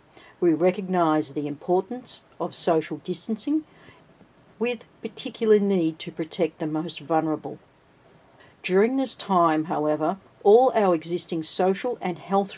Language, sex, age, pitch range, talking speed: English, female, 60-79, 160-205 Hz, 120 wpm